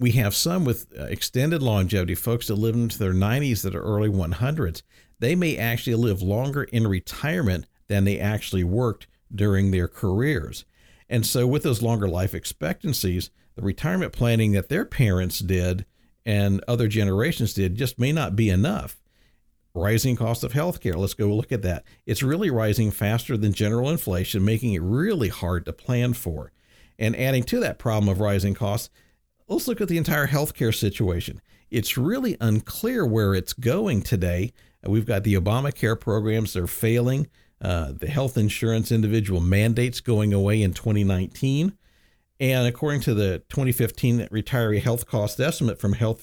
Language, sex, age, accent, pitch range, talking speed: English, male, 50-69, American, 100-125 Hz, 165 wpm